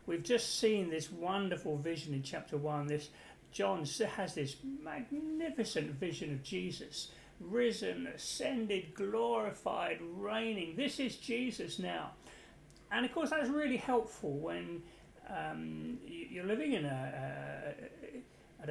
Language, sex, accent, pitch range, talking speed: English, male, British, 155-230 Hz, 125 wpm